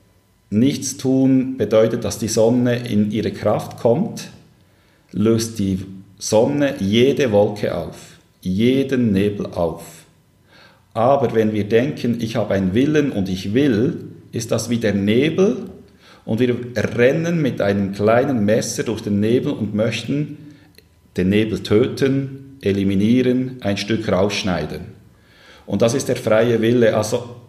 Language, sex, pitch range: German, male, 100-120 Hz